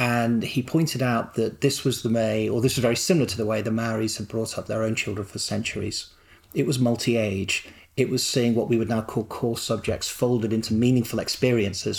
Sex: male